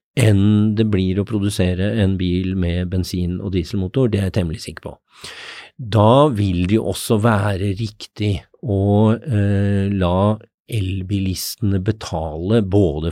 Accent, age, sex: Swedish, 50-69, male